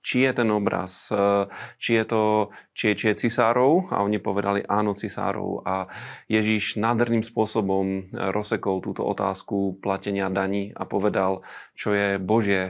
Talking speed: 140 wpm